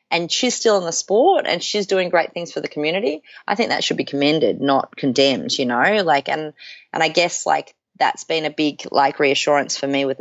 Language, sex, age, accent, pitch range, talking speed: English, female, 30-49, Australian, 135-170 Hz, 230 wpm